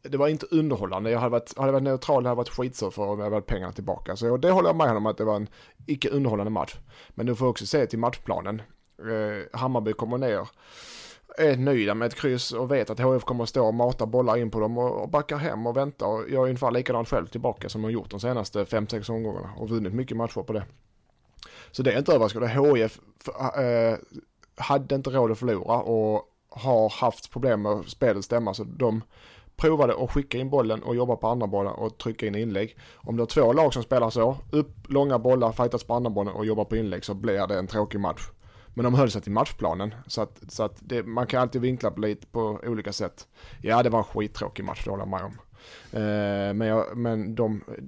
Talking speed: 225 wpm